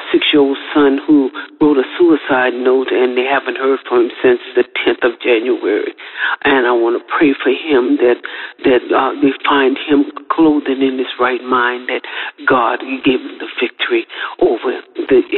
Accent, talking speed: American, 170 wpm